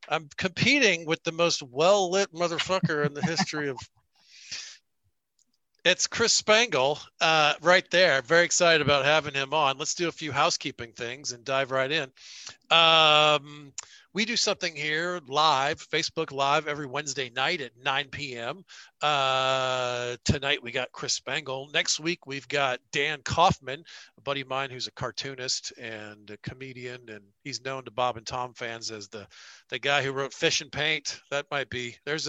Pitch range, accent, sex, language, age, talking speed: 120-155 Hz, American, male, English, 50-69, 165 wpm